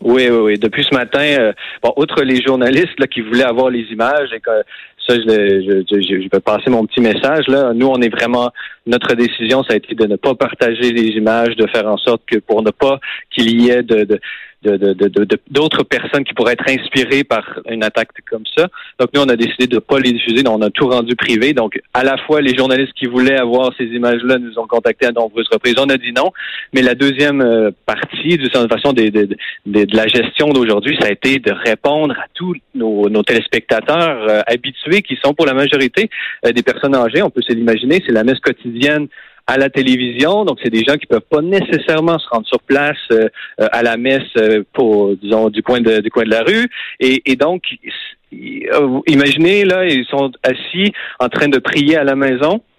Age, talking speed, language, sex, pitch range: 30-49, 225 wpm, French, male, 115-145 Hz